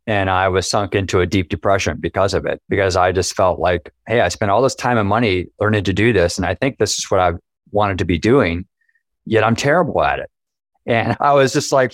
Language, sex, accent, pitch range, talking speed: English, male, American, 105-130 Hz, 245 wpm